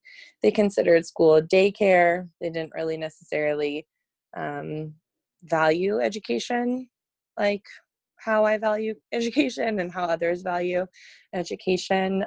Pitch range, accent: 160-205 Hz, American